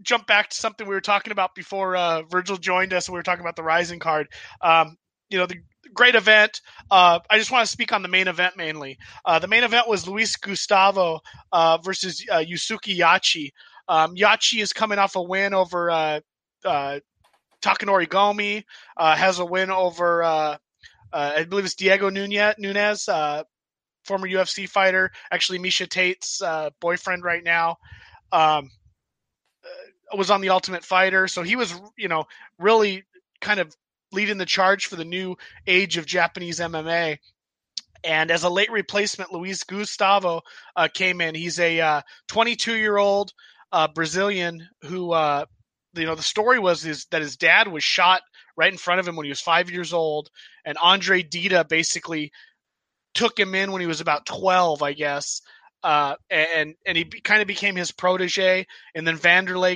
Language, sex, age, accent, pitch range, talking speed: English, male, 20-39, American, 165-200 Hz, 180 wpm